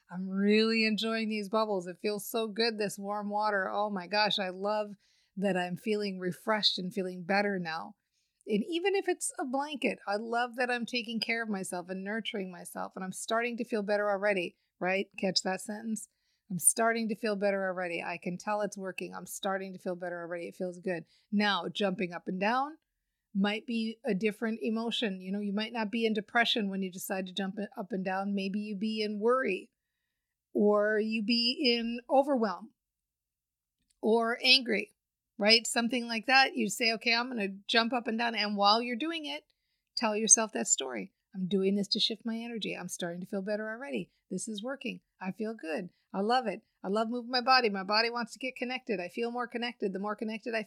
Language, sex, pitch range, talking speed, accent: English, female, 195-235 Hz, 205 wpm, American